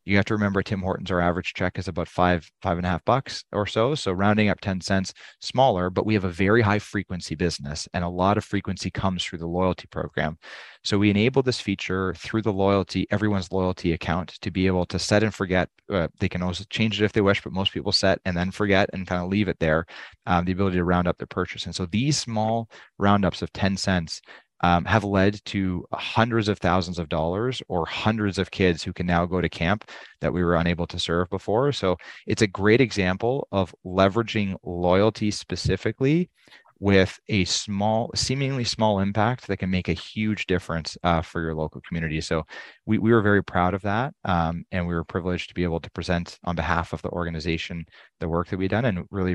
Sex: male